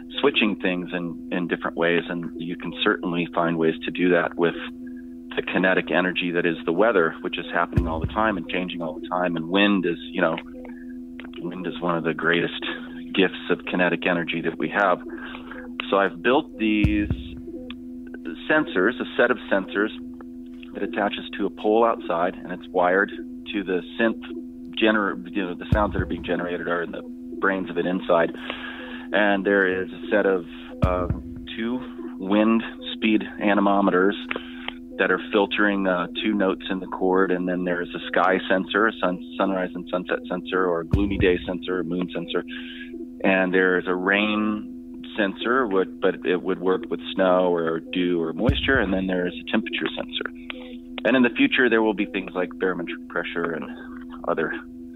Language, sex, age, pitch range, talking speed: English, male, 40-59, 85-95 Hz, 175 wpm